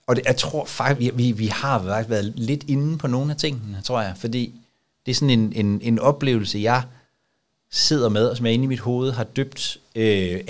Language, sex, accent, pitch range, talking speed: Danish, male, native, 105-135 Hz, 230 wpm